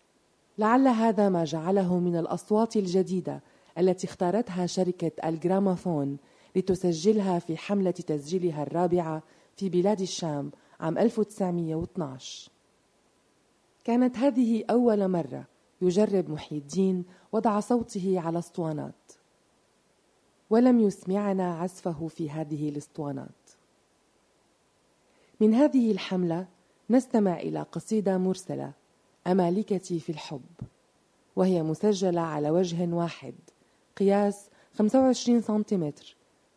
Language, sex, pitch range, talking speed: Arabic, female, 165-205 Hz, 90 wpm